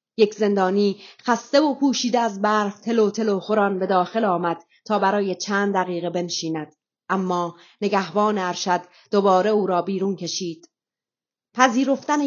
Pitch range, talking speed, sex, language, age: 180-215 Hz, 130 wpm, female, Persian, 30-49